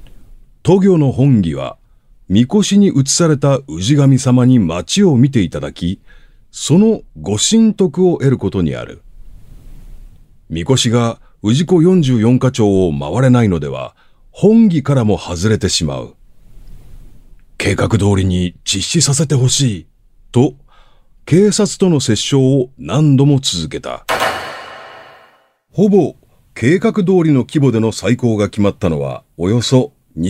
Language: Japanese